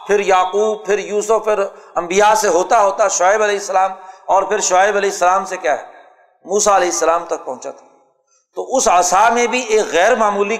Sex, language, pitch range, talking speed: male, Urdu, 175-210 Hz, 195 wpm